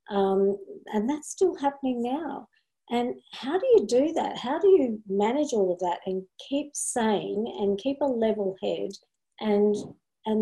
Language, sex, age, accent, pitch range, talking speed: English, female, 40-59, Australian, 190-235 Hz, 165 wpm